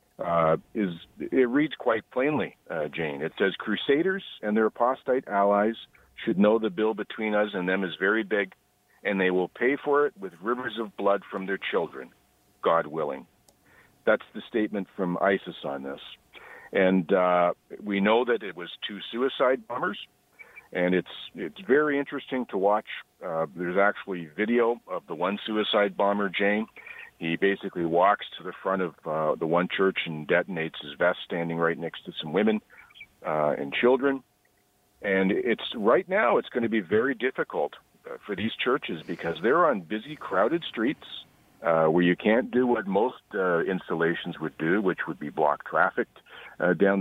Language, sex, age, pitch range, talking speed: English, male, 50-69, 90-110 Hz, 175 wpm